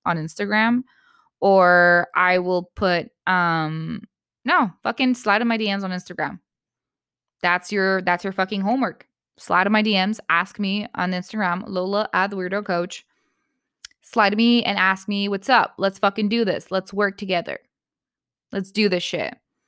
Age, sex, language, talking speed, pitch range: 20-39, female, English, 160 wpm, 175-215 Hz